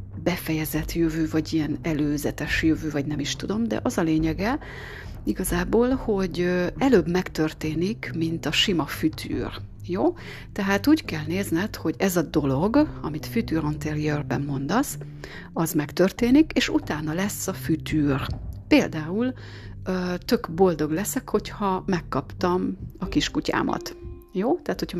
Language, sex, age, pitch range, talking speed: Hungarian, female, 40-59, 155-190 Hz, 125 wpm